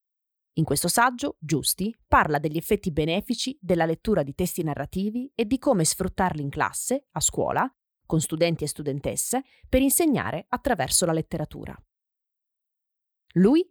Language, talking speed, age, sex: Italian, 135 wpm, 30-49, female